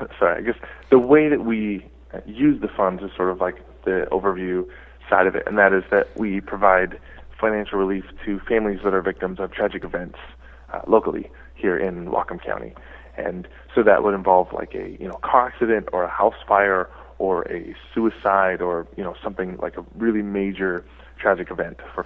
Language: English